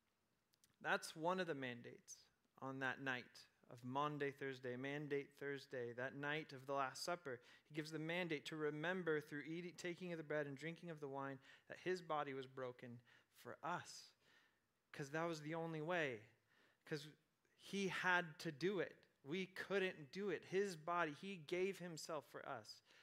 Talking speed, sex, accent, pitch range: 170 wpm, male, American, 140-175 Hz